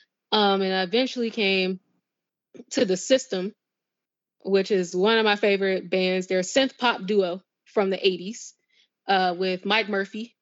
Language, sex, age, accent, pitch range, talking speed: English, female, 20-39, American, 185-210 Hz, 155 wpm